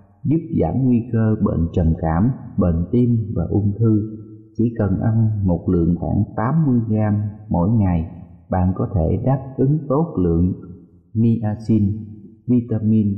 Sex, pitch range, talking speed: male, 100-125 Hz, 140 wpm